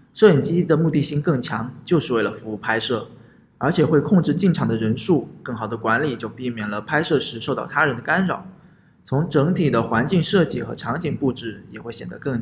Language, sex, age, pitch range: Chinese, male, 20-39, 115-160 Hz